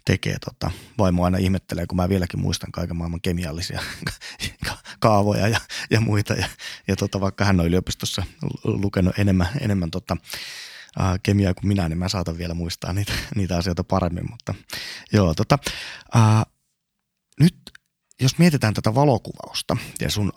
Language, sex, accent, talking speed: Finnish, male, native, 150 wpm